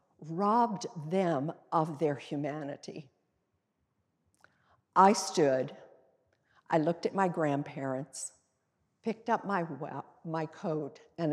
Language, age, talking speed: English, 50-69, 95 wpm